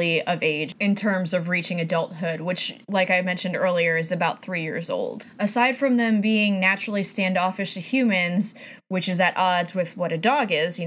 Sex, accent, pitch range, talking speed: female, American, 175-215 Hz, 195 wpm